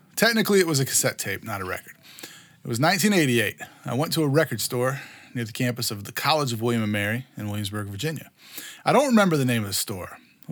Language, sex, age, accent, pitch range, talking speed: English, male, 30-49, American, 110-150 Hz, 230 wpm